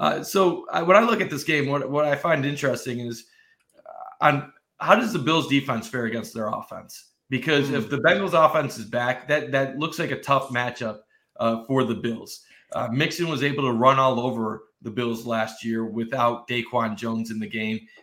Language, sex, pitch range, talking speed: English, male, 115-150 Hz, 205 wpm